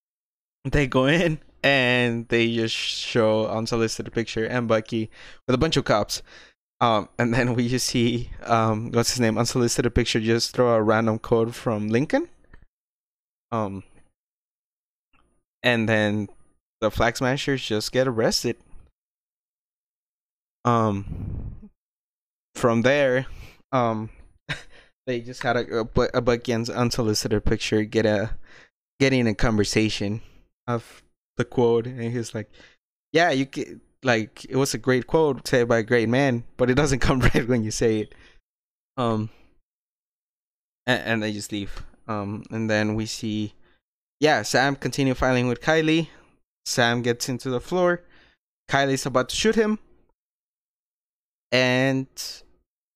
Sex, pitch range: male, 110-130 Hz